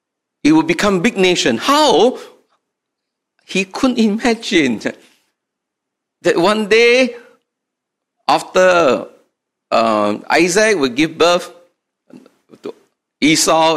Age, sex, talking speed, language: 50-69, male, 90 wpm, English